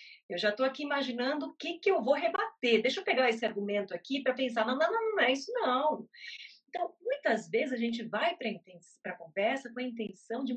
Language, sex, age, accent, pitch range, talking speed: Portuguese, female, 30-49, Brazilian, 215-305 Hz, 220 wpm